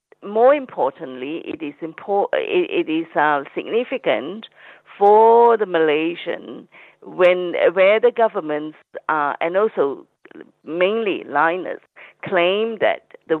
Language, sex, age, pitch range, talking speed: English, female, 50-69, 165-245 Hz, 110 wpm